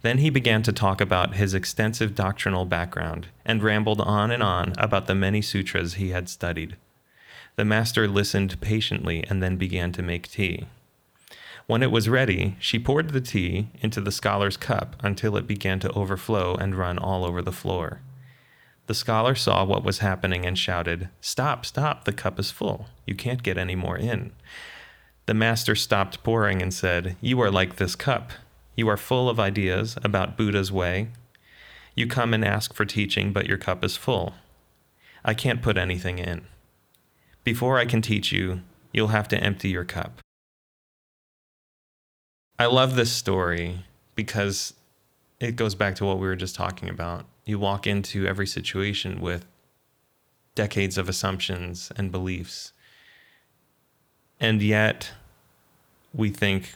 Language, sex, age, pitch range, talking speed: English, male, 30-49, 95-110 Hz, 160 wpm